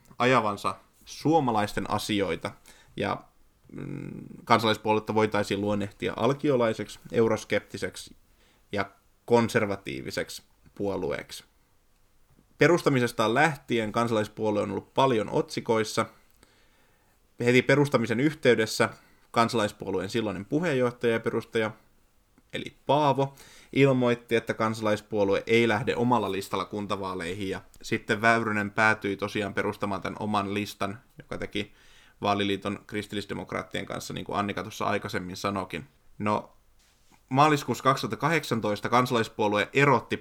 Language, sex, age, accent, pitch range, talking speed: Finnish, male, 20-39, native, 100-120 Hz, 95 wpm